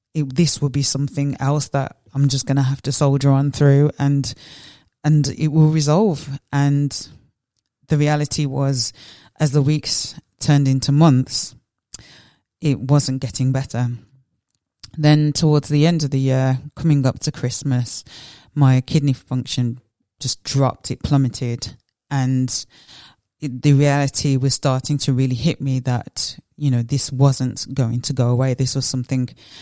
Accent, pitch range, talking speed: British, 130-145 Hz, 150 wpm